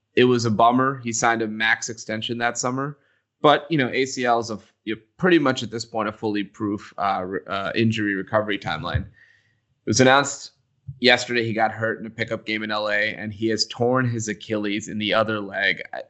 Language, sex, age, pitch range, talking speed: English, male, 20-39, 105-120 Hz, 200 wpm